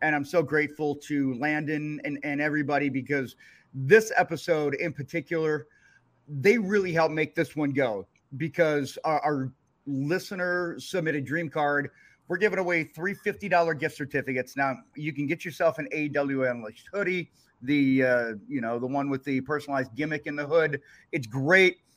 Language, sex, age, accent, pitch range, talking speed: English, male, 30-49, American, 140-175 Hz, 160 wpm